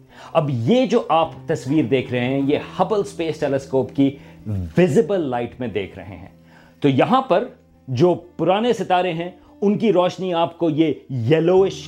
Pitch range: 130-175 Hz